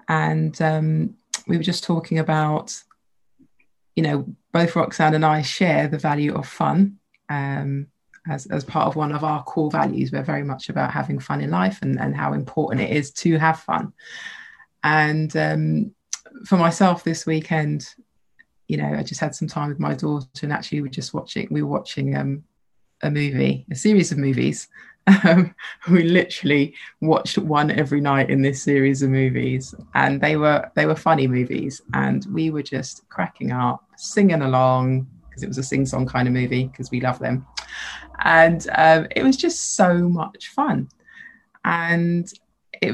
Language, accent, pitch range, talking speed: English, British, 135-170 Hz, 175 wpm